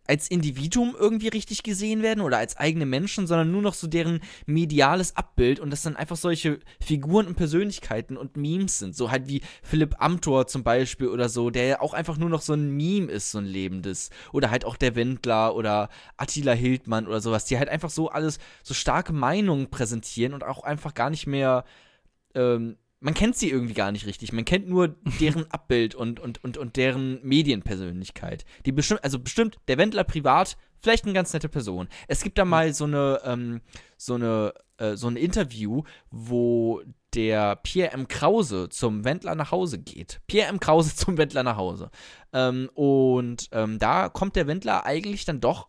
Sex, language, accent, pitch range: male, German, German, 120-170 Hz